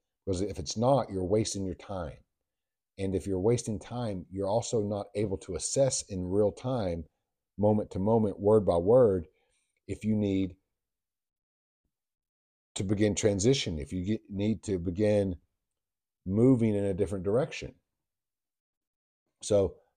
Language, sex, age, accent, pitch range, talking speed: English, male, 50-69, American, 85-105 Hz, 135 wpm